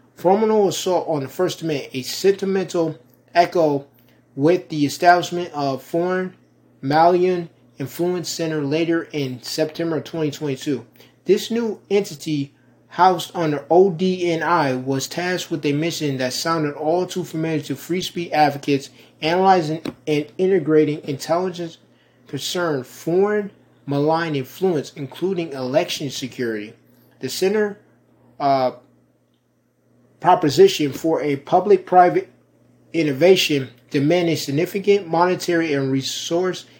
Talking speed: 110 wpm